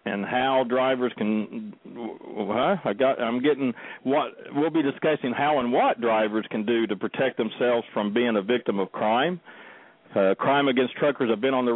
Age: 50-69